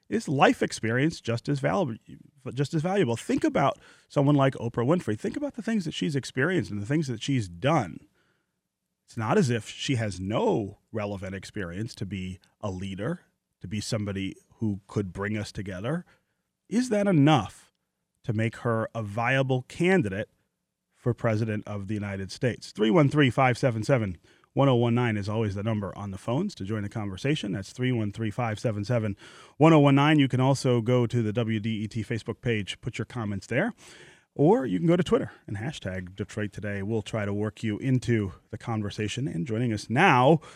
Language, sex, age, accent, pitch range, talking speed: English, male, 30-49, American, 105-135 Hz, 170 wpm